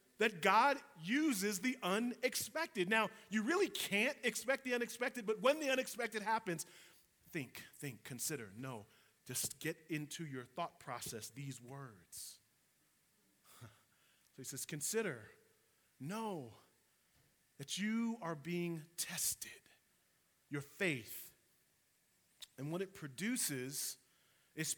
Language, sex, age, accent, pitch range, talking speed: English, male, 30-49, American, 170-235 Hz, 110 wpm